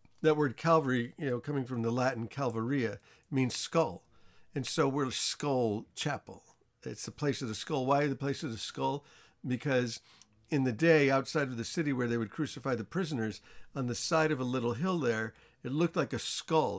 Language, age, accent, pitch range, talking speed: English, 50-69, American, 120-160 Hz, 200 wpm